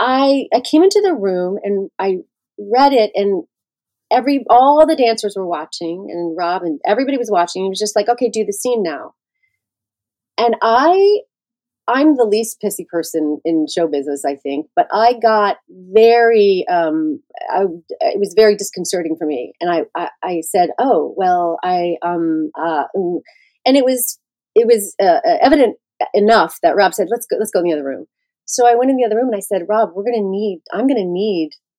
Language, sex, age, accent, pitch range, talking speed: English, female, 30-49, American, 180-250 Hz, 195 wpm